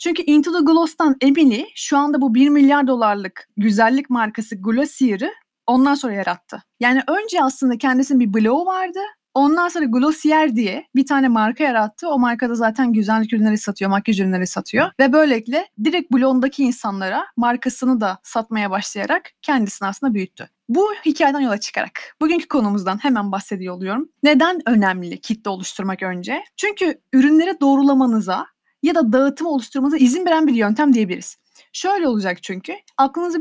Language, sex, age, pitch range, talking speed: Turkish, female, 30-49, 220-300 Hz, 150 wpm